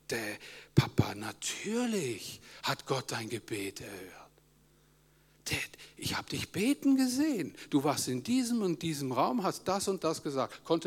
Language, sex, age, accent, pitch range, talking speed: German, male, 60-79, German, 135-200 Hz, 150 wpm